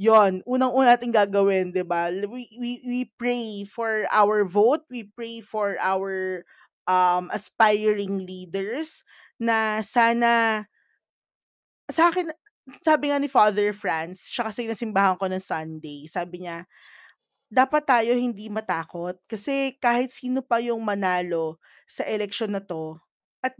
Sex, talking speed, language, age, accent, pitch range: female, 130 wpm, Filipino, 20-39, native, 190-250 Hz